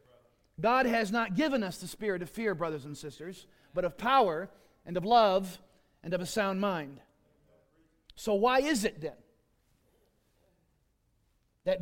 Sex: male